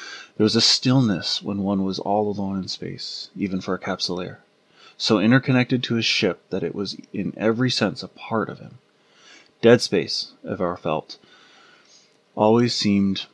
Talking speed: 160 wpm